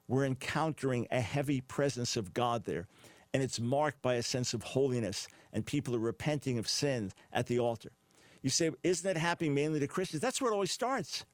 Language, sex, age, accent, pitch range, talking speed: English, male, 50-69, American, 125-160 Hz, 200 wpm